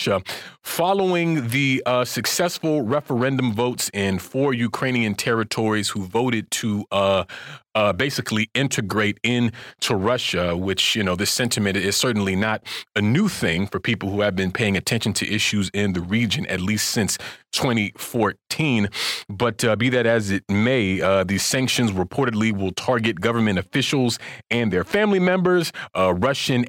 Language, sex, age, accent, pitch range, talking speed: English, male, 30-49, American, 100-125 Hz, 150 wpm